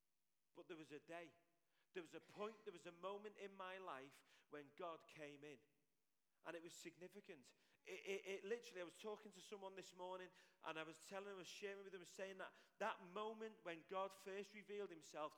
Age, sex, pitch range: 40-59, male, 165-215 Hz